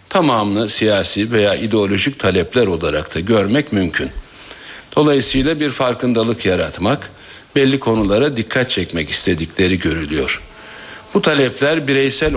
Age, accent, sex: 60-79, native, male